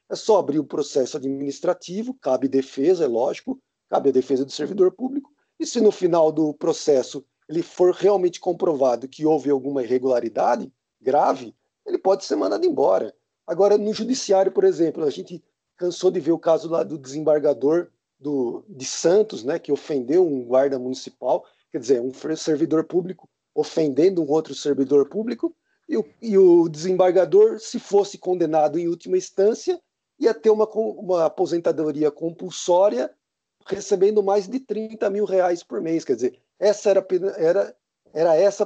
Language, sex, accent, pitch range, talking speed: Portuguese, male, Brazilian, 155-210 Hz, 160 wpm